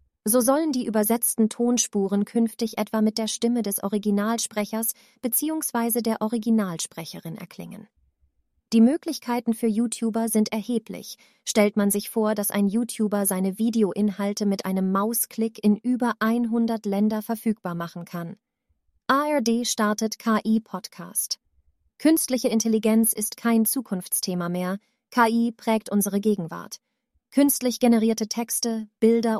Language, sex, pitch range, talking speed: German, female, 205-230 Hz, 120 wpm